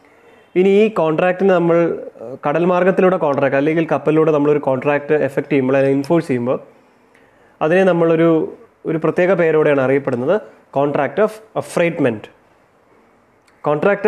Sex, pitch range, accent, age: male, 145-185 Hz, native, 20-39